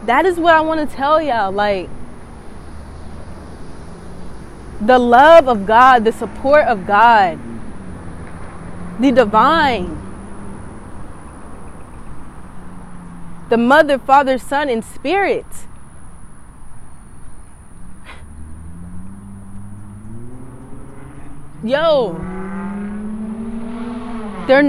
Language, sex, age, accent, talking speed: English, female, 20-39, American, 65 wpm